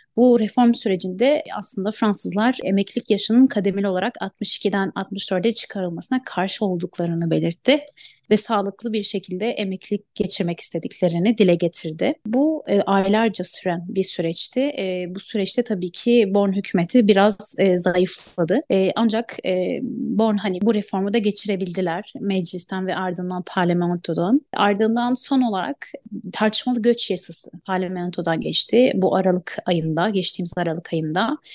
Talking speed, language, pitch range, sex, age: 125 wpm, Turkish, 185-235 Hz, female, 30-49